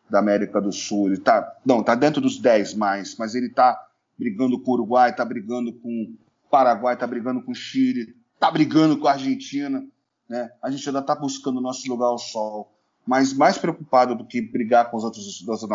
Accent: Brazilian